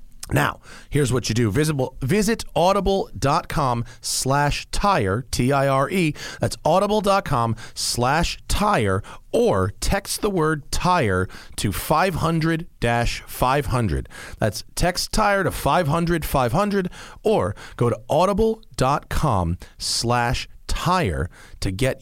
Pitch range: 105-160 Hz